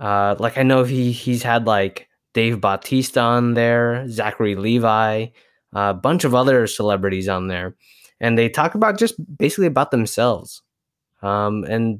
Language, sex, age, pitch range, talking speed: English, male, 20-39, 105-130 Hz, 160 wpm